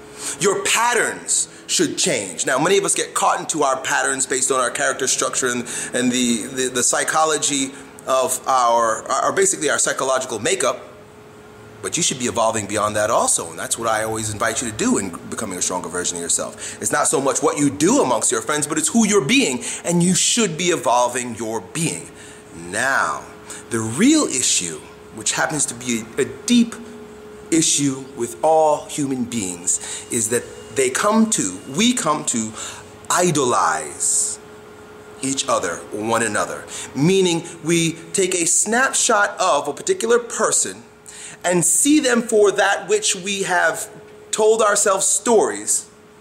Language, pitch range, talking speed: English, 130-220 Hz, 160 wpm